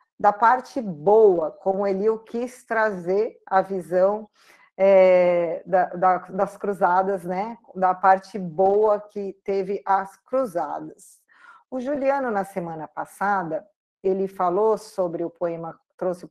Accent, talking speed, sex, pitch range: Brazilian, 115 wpm, female, 185-230 Hz